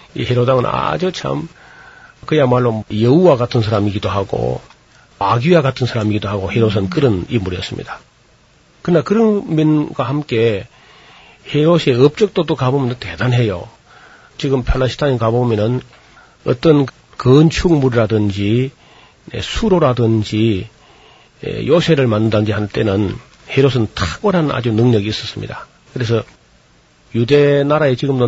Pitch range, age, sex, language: 110-140 Hz, 40-59, male, Korean